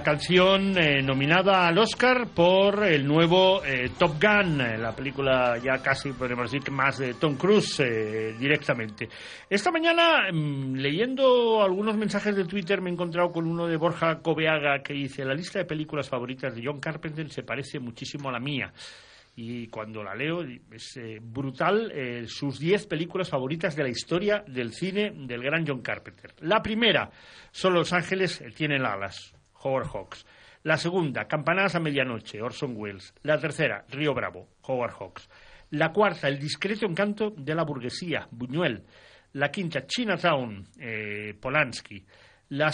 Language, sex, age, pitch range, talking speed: Spanish, male, 40-59, 125-180 Hz, 160 wpm